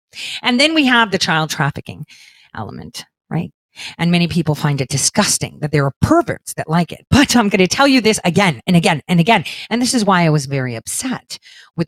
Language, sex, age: English, female, 40-59